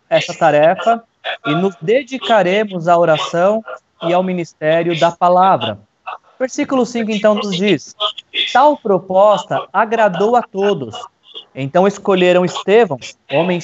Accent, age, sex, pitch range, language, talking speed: Brazilian, 20-39, male, 170-215 Hz, Portuguese, 115 wpm